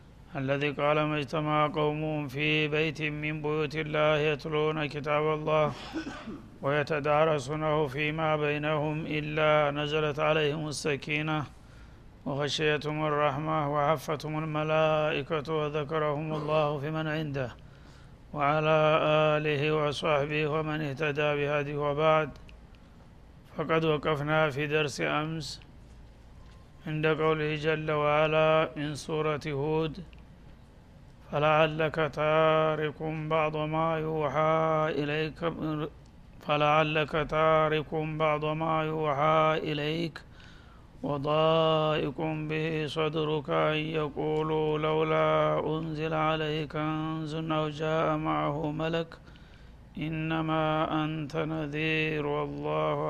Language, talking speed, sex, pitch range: Amharic, 80 wpm, male, 150-155 Hz